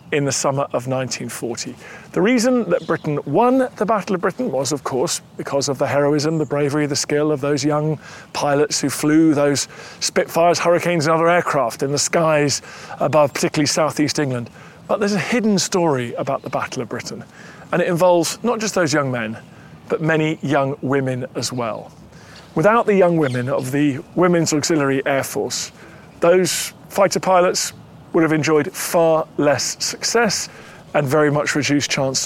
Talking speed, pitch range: 170 wpm, 140-175 Hz